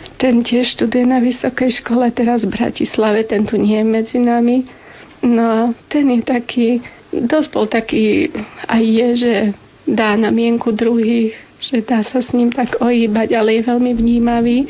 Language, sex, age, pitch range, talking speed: Slovak, female, 40-59, 225-250 Hz, 165 wpm